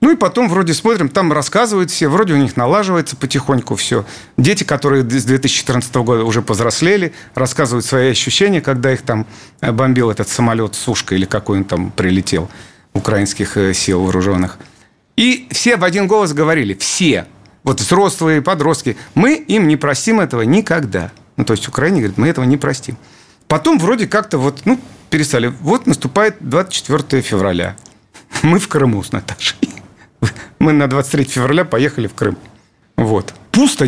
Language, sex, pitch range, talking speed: Russian, male, 120-165 Hz, 155 wpm